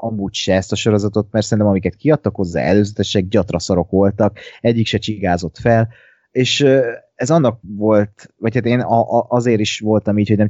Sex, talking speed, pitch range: male, 170 wpm, 90-110 Hz